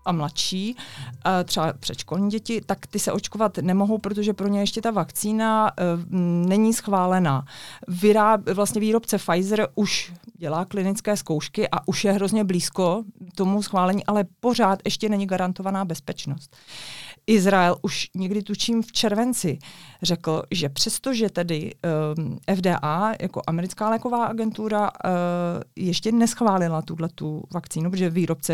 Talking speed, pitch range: 120 wpm, 170-200 Hz